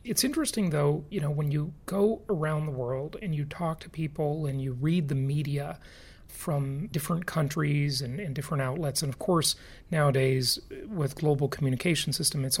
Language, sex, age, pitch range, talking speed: English, male, 30-49, 140-175 Hz, 175 wpm